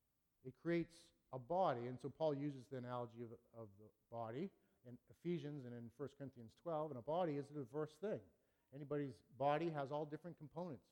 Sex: male